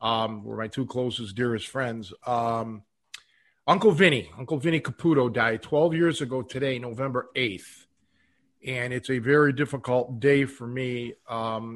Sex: male